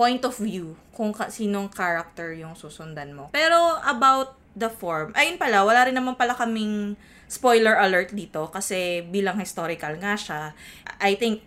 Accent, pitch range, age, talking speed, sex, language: native, 165-215 Hz, 20-39, 160 wpm, female, Filipino